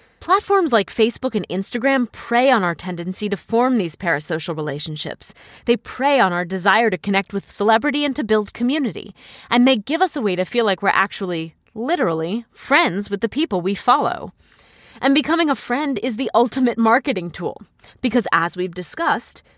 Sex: female